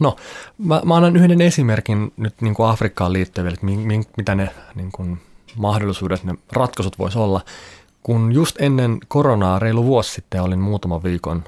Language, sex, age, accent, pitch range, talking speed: Finnish, male, 30-49, native, 95-135 Hz, 160 wpm